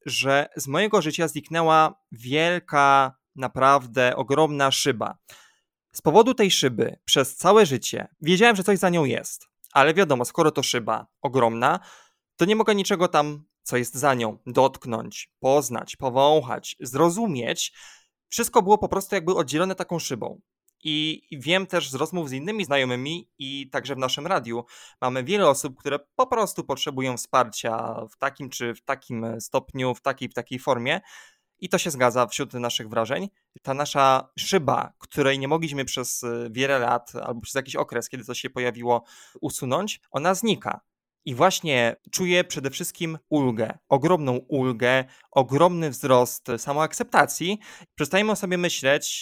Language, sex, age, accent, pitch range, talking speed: Polish, male, 20-39, native, 125-170 Hz, 150 wpm